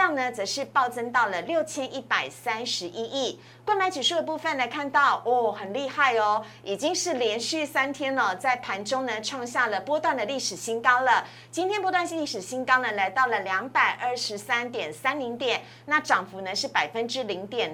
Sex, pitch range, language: female, 230-295 Hz, Chinese